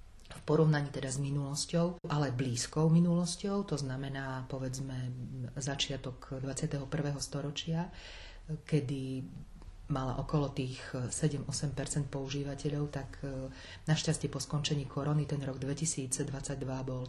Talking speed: 100 wpm